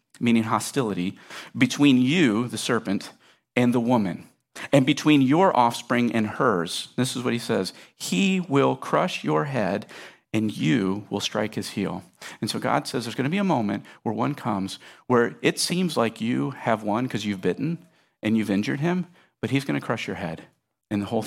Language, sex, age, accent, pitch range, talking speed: English, male, 50-69, American, 115-145 Hz, 190 wpm